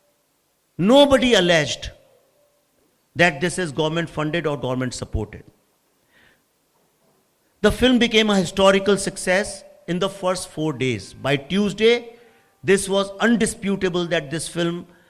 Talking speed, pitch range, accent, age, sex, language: 115 wpm, 130-195 Hz, Indian, 50-69, male, English